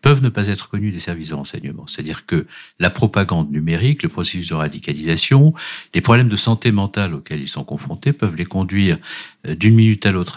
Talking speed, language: 195 wpm, French